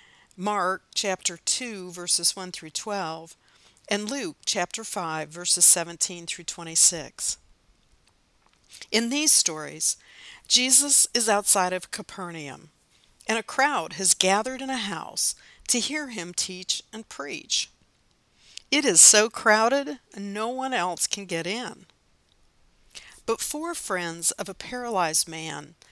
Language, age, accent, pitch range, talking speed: English, 50-69, American, 170-230 Hz, 125 wpm